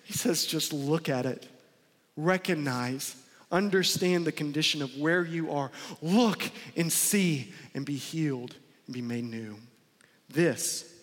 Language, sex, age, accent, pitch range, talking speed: Russian, male, 40-59, American, 135-160 Hz, 135 wpm